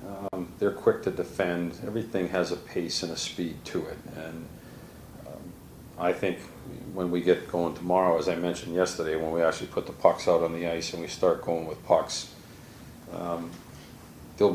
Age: 40-59